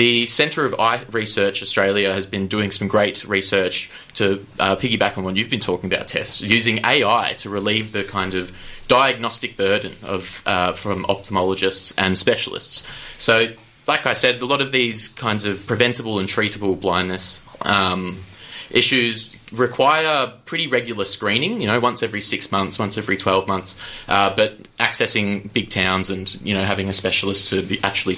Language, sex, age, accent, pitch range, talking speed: English, male, 20-39, Australian, 95-120 Hz, 170 wpm